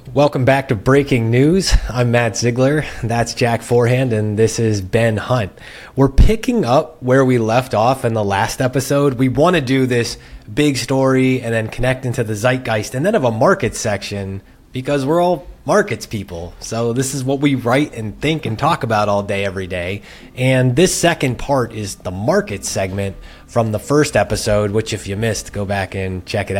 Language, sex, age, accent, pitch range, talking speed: English, male, 30-49, American, 105-140 Hz, 195 wpm